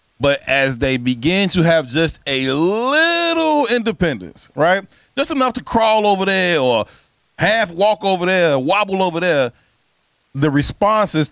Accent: American